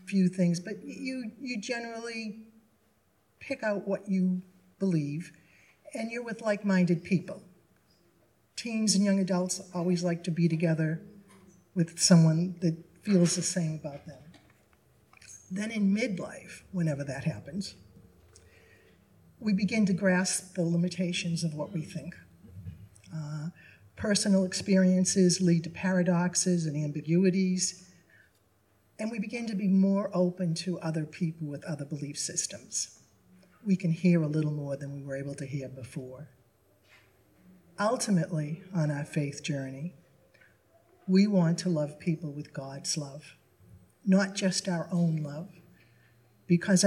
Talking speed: 130 wpm